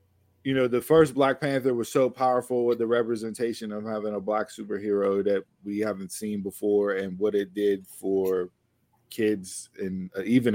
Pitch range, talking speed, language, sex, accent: 100-120 Hz, 170 wpm, English, male, American